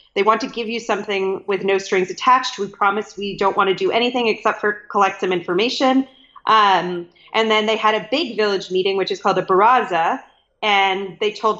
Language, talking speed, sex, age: English, 205 wpm, female, 30-49